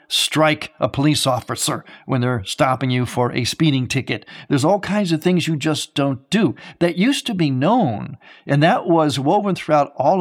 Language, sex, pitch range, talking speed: English, male, 125-170 Hz, 190 wpm